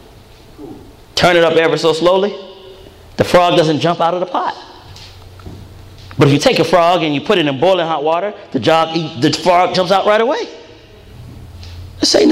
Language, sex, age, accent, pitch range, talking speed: English, male, 30-49, American, 150-210 Hz, 180 wpm